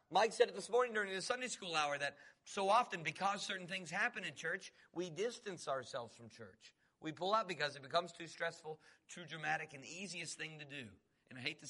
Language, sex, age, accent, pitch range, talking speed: English, male, 40-59, American, 140-190 Hz, 225 wpm